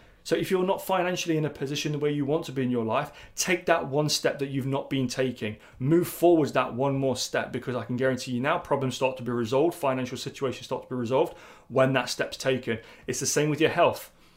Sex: male